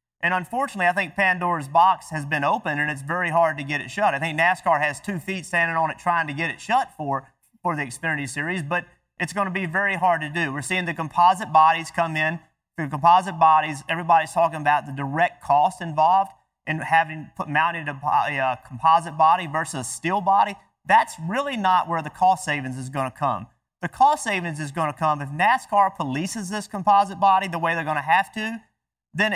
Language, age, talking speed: English, 30-49, 215 wpm